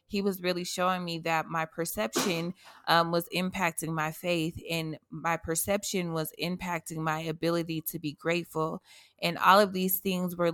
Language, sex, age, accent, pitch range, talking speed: English, female, 20-39, American, 160-180 Hz, 165 wpm